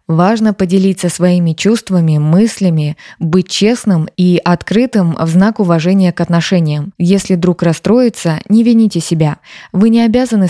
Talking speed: 130 wpm